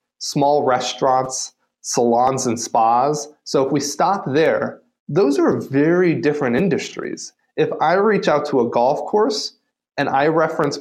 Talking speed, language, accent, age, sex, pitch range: 145 wpm, English, American, 30-49, male, 125-180 Hz